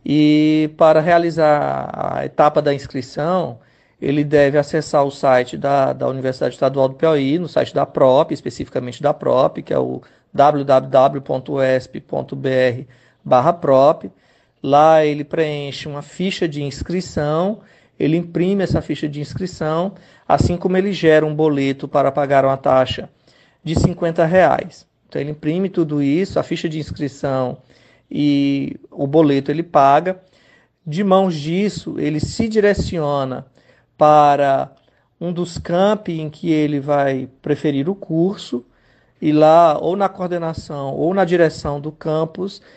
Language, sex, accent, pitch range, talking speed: Portuguese, male, Brazilian, 140-170 Hz, 135 wpm